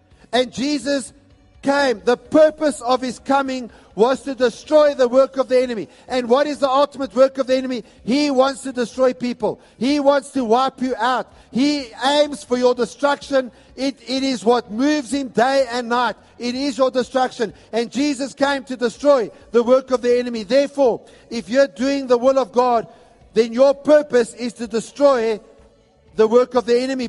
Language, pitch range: English, 225-265 Hz